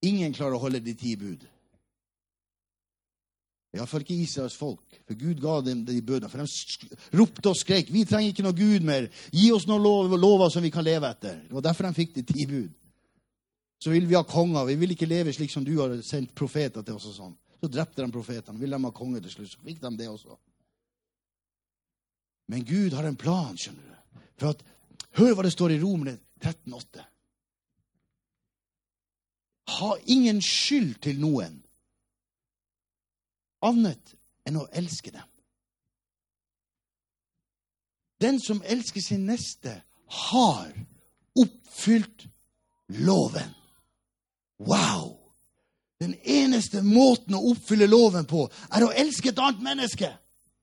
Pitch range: 125-200 Hz